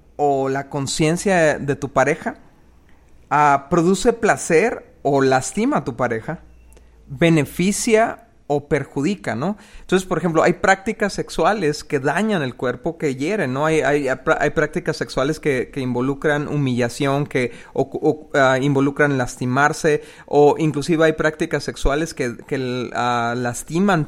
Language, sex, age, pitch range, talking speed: Spanish, male, 40-59, 135-170 Hz, 135 wpm